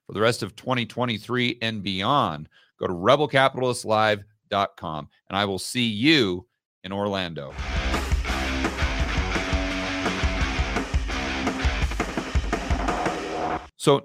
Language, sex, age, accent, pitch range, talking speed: English, male, 40-59, American, 95-125 Hz, 75 wpm